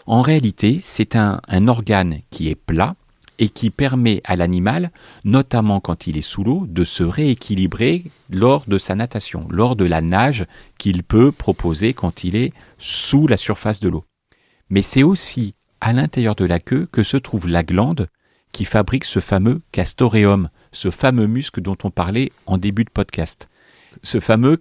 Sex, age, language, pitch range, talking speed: male, 40-59, French, 95-130 Hz, 175 wpm